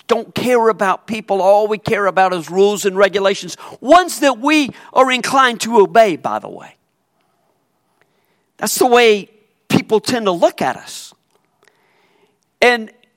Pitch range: 165-230 Hz